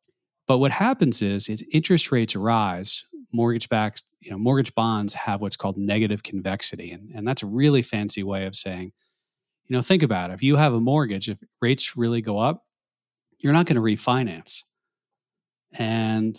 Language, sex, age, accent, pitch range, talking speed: English, male, 40-59, American, 105-135 Hz, 180 wpm